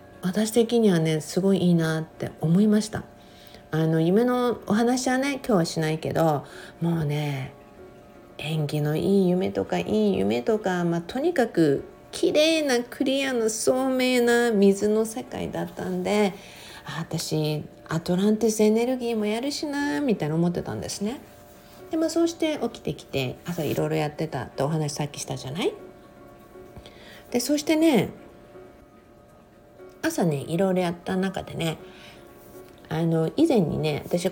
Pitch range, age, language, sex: 155-220 Hz, 50-69, Japanese, female